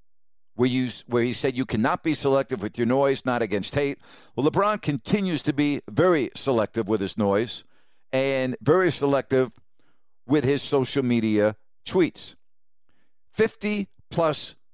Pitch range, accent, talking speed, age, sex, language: 125-160 Hz, American, 135 wpm, 50-69, male, English